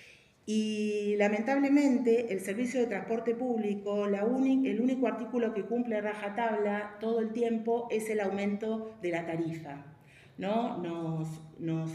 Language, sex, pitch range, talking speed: Spanish, female, 170-225 Hz, 140 wpm